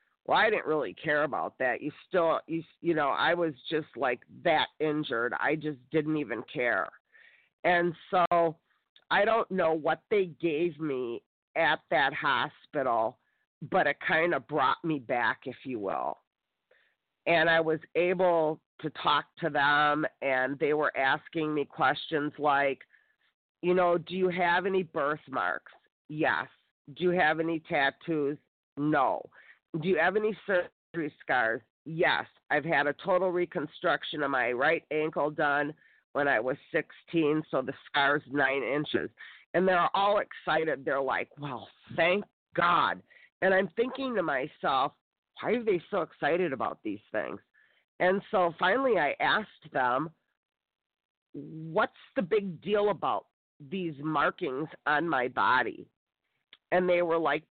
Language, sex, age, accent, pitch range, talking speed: English, female, 40-59, American, 150-185 Hz, 150 wpm